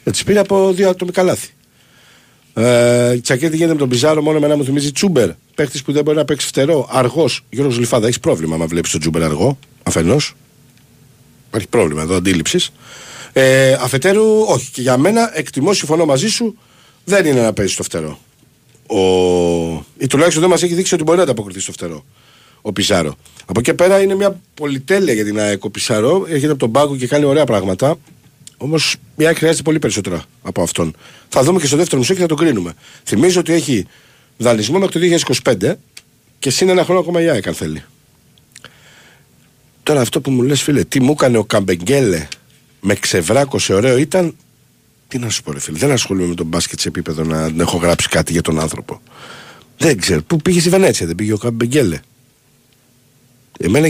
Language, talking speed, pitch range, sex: Greek, 185 wpm, 105-160 Hz, male